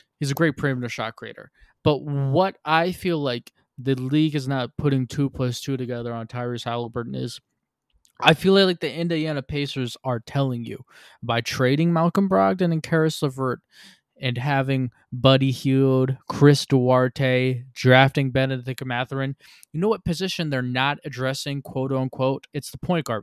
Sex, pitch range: male, 130-165 Hz